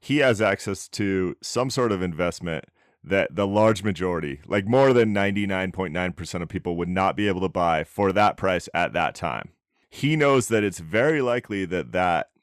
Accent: American